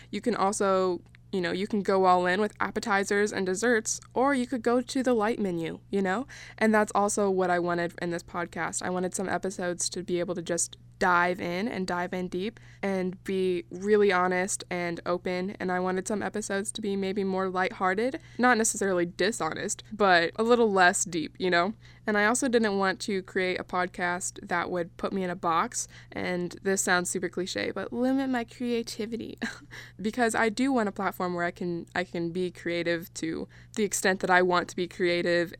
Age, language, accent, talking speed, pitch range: 20-39, English, American, 205 wpm, 180-210 Hz